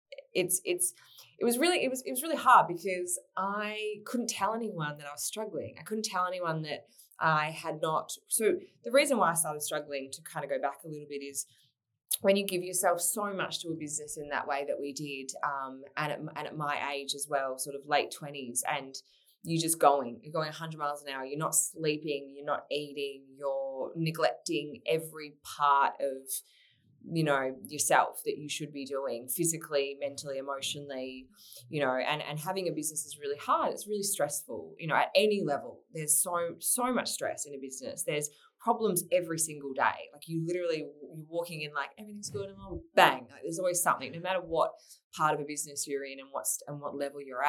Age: 20-39